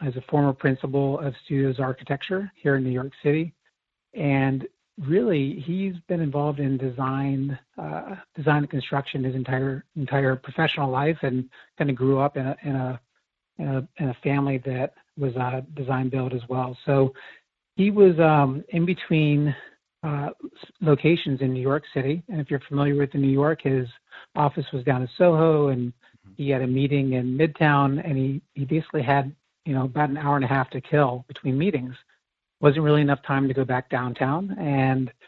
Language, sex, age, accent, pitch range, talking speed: English, male, 40-59, American, 130-150 Hz, 185 wpm